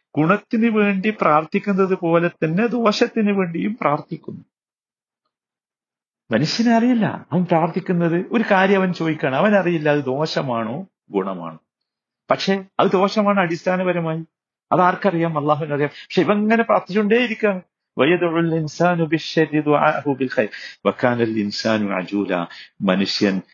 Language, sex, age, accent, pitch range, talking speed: Malayalam, male, 50-69, native, 145-200 Hz, 85 wpm